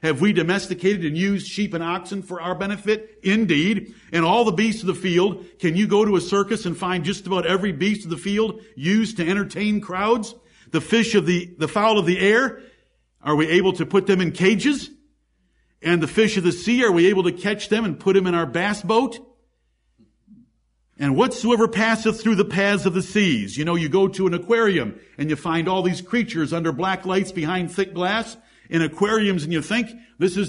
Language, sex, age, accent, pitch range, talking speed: English, male, 50-69, American, 165-210 Hz, 215 wpm